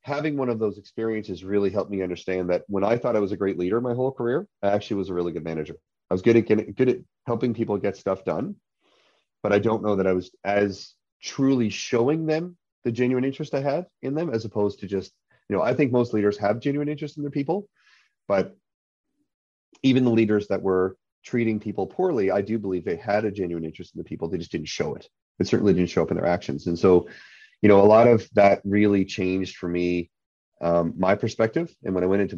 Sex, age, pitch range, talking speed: male, 30-49, 90-120 Hz, 235 wpm